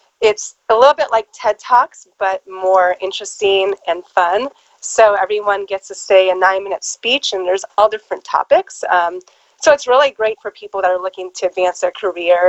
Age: 30-49